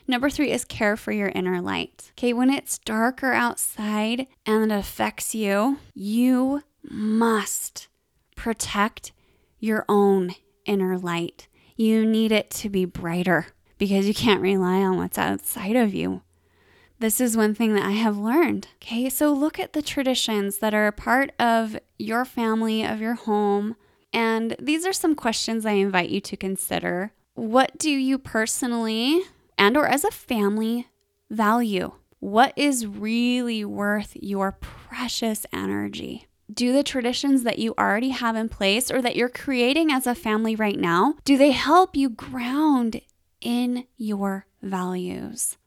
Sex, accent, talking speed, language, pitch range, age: female, American, 150 wpm, English, 205-260 Hz, 20-39